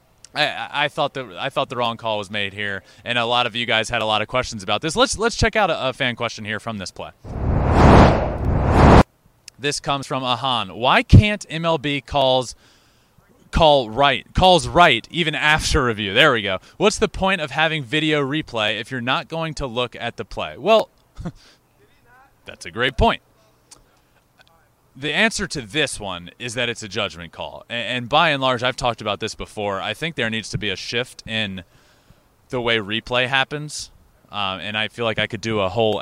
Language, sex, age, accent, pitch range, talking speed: English, male, 30-49, American, 110-145 Hz, 200 wpm